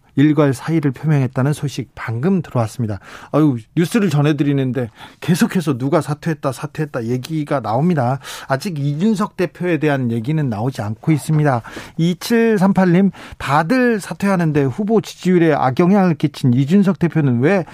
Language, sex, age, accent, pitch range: Korean, male, 40-59, native, 130-180 Hz